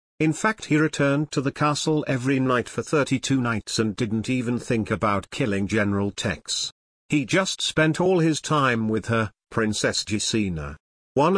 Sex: male